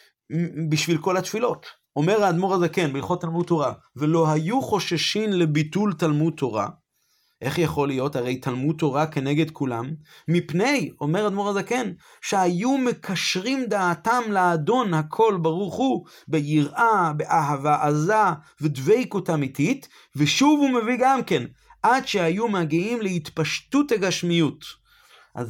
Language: Hebrew